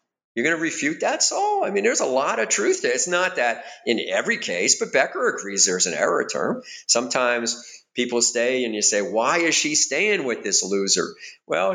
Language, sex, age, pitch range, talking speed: English, male, 50-69, 115-185 Hz, 215 wpm